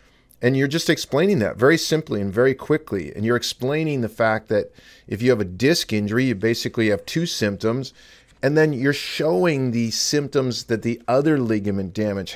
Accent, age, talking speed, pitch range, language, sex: American, 40-59, 185 wpm, 110-140 Hz, English, male